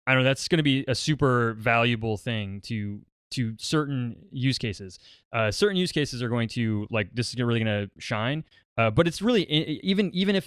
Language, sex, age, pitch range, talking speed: English, male, 20-39, 105-140 Hz, 210 wpm